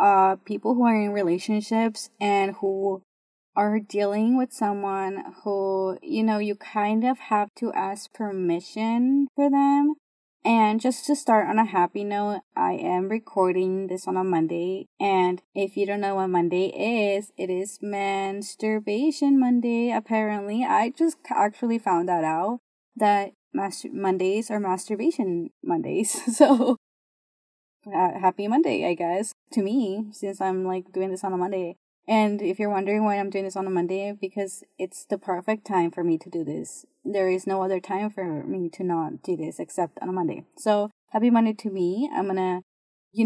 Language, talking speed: English, 170 wpm